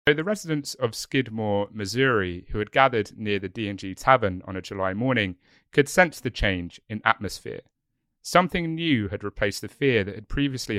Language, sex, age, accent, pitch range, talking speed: English, male, 30-49, British, 90-125 Hz, 170 wpm